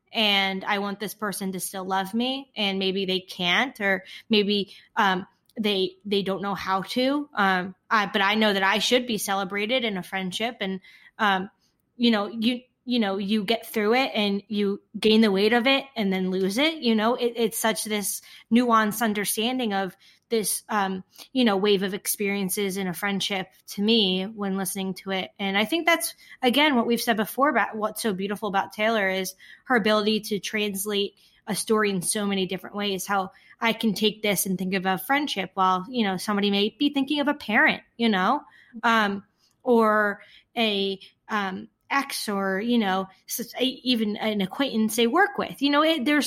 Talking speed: 190 wpm